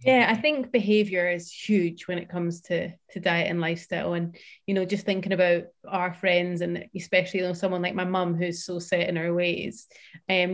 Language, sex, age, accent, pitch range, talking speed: English, female, 30-49, British, 180-195 Hz, 210 wpm